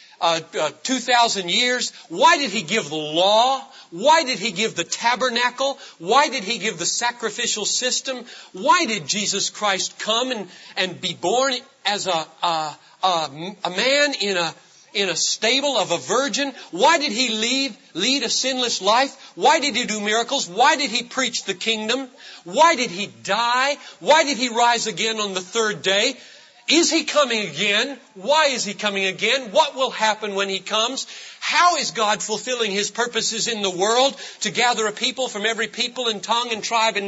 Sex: male